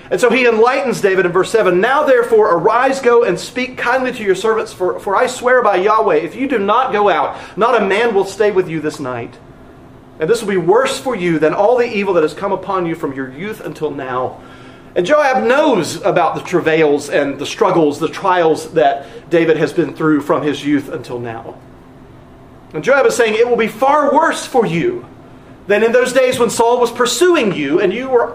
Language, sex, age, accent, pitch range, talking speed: English, male, 40-59, American, 170-255 Hz, 220 wpm